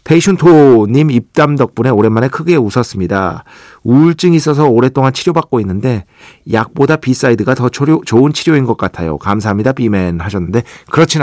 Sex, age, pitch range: male, 40-59, 100-135 Hz